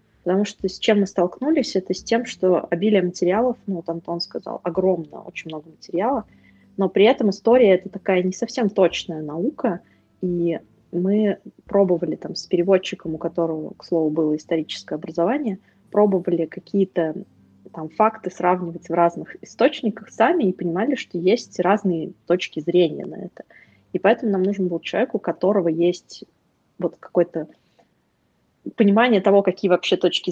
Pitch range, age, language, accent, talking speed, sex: 170-200 Hz, 20-39, Russian, native, 155 wpm, female